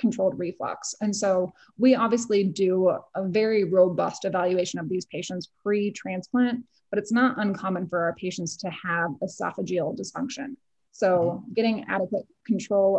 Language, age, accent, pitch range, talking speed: English, 20-39, American, 175-220 Hz, 145 wpm